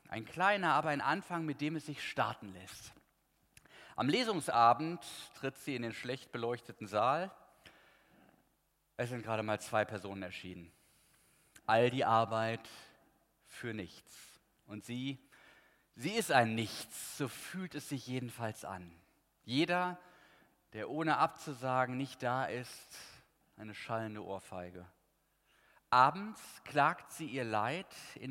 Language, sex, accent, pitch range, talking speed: German, male, German, 110-140 Hz, 125 wpm